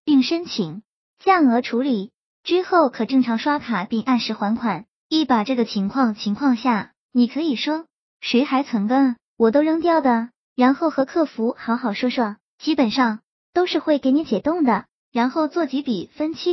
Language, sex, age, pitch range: Chinese, male, 20-39, 220-290 Hz